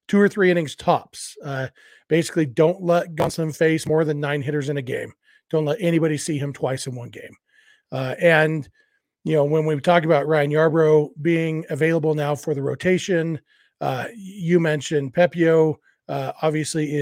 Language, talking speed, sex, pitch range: English, 175 wpm, male, 145-170 Hz